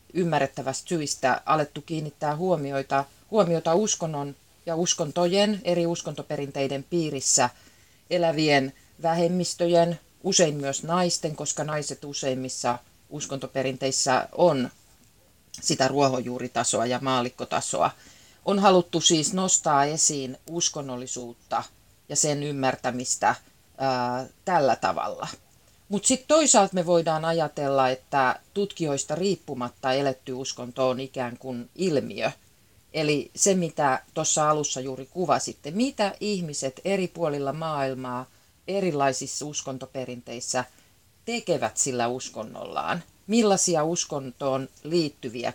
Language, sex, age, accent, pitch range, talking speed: Finnish, female, 30-49, native, 130-170 Hz, 95 wpm